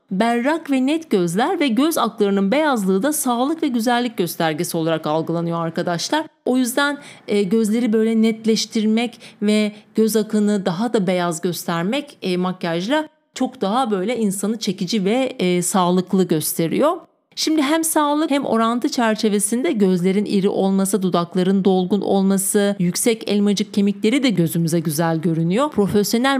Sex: female